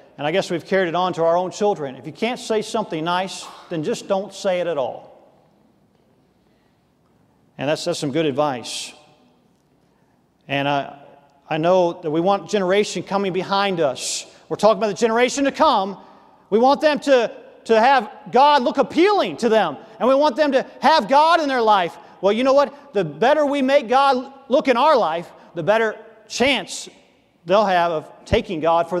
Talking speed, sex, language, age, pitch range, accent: 190 wpm, male, English, 40-59, 180-260 Hz, American